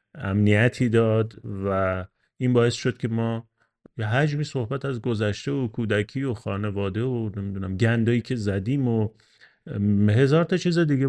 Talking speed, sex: 145 wpm, male